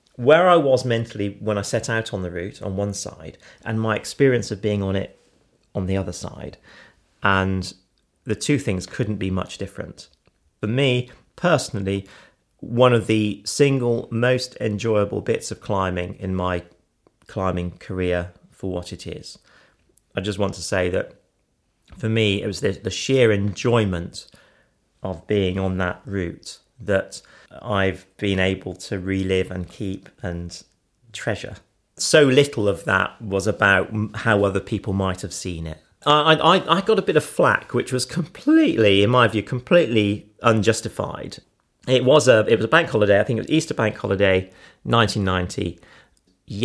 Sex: male